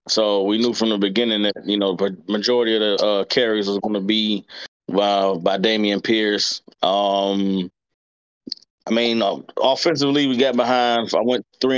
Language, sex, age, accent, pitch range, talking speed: English, male, 20-39, American, 105-125 Hz, 175 wpm